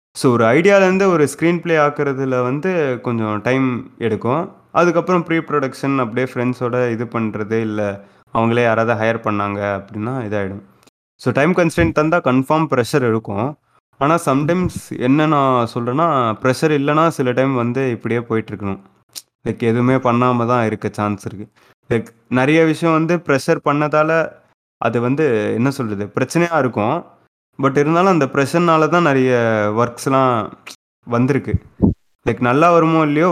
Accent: native